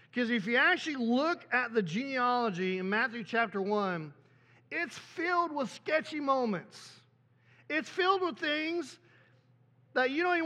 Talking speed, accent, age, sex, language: 145 wpm, American, 40-59, male, English